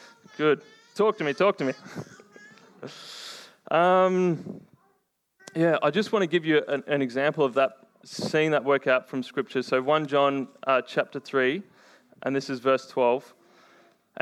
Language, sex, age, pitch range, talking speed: English, male, 20-39, 140-170 Hz, 155 wpm